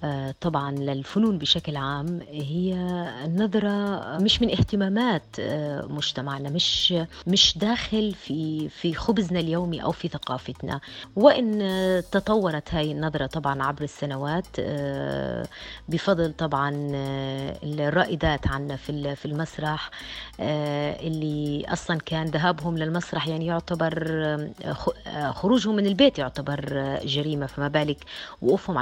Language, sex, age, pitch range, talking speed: Arabic, female, 30-49, 145-190 Hz, 95 wpm